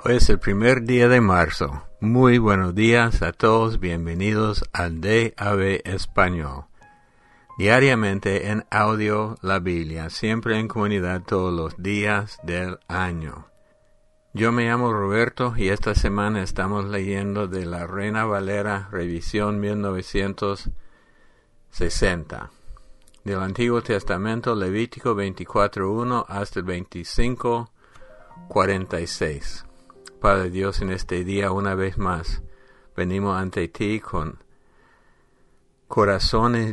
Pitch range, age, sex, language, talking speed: 90-110 Hz, 60-79, male, English, 105 wpm